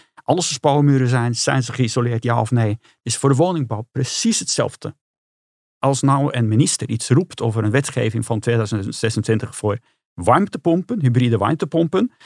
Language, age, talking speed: Dutch, 50-69, 150 wpm